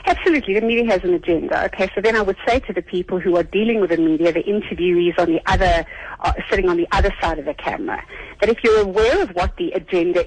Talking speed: 250 wpm